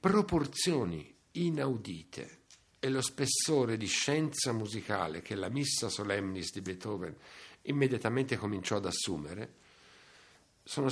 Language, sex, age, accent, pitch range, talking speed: Italian, male, 60-79, native, 105-145 Hz, 105 wpm